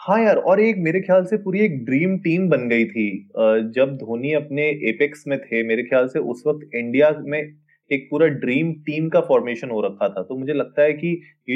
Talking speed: 220 wpm